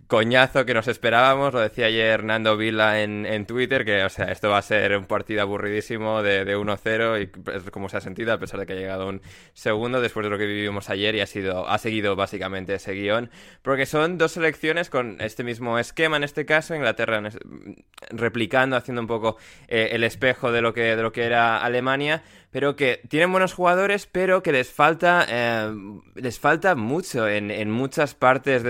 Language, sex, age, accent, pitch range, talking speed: Spanish, male, 20-39, Spanish, 105-140 Hz, 205 wpm